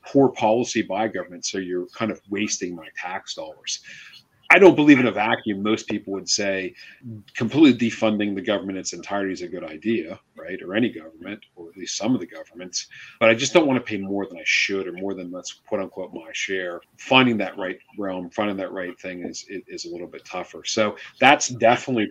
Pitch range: 95-125 Hz